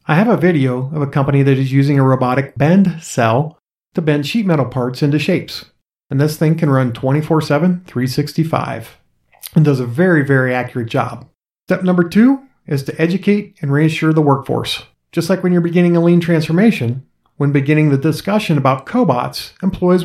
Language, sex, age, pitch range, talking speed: English, male, 40-59, 140-180 Hz, 180 wpm